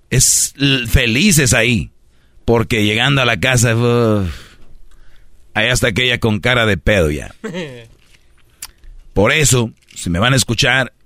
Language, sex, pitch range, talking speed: Spanish, male, 110-140 Hz, 120 wpm